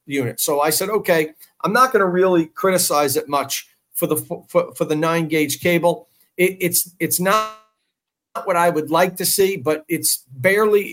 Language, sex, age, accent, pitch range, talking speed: English, male, 50-69, American, 160-220 Hz, 185 wpm